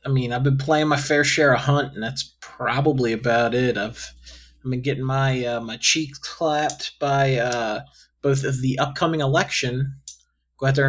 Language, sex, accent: English, male, American